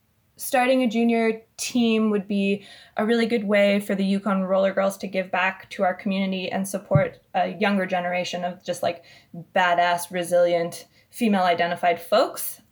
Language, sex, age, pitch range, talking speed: English, female, 20-39, 185-220 Hz, 160 wpm